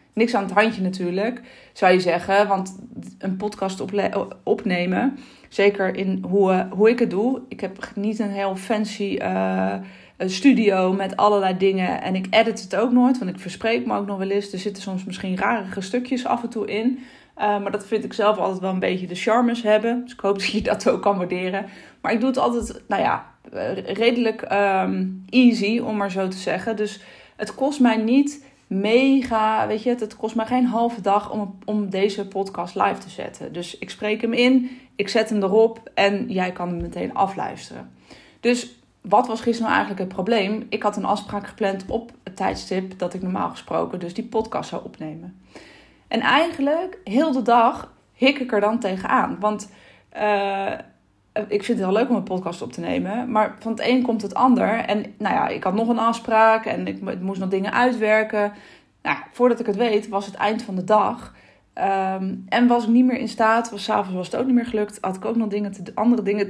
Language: Dutch